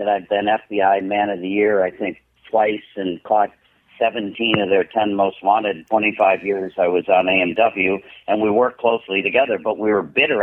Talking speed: 195 wpm